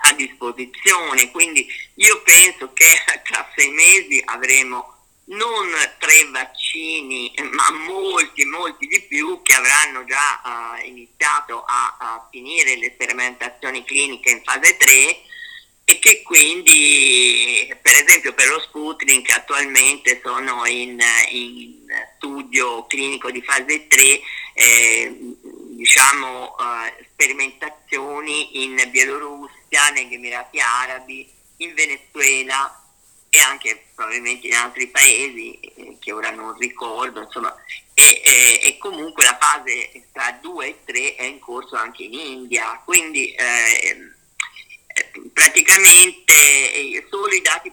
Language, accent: Italian, native